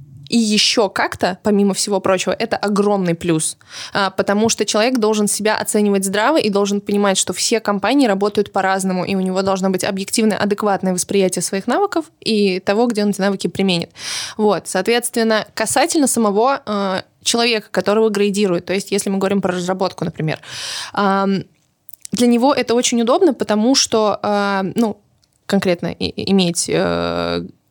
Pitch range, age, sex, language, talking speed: 200-240 Hz, 20-39, female, Russian, 145 wpm